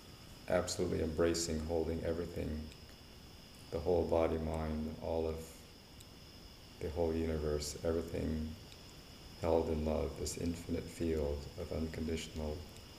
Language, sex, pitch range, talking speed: English, male, 75-85 Hz, 100 wpm